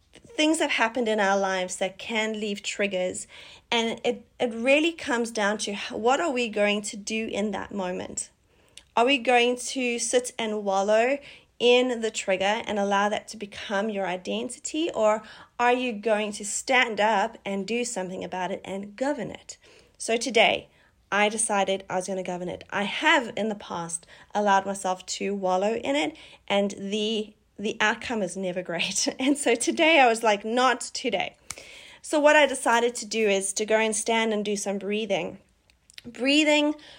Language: English